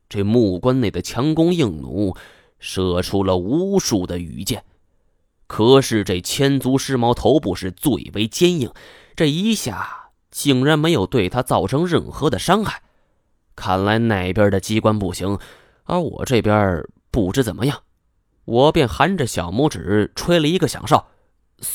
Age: 20-39